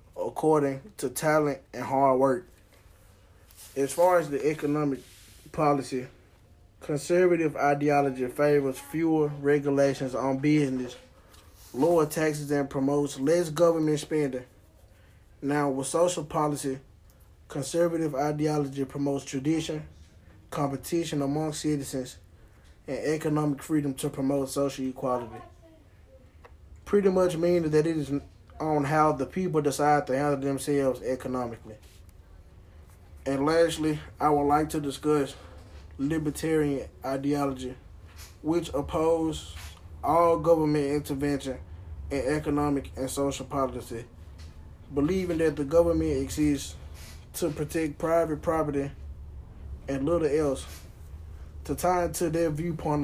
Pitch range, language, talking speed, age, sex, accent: 95-155 Hz, English, 105 wpm, 20-39, male, American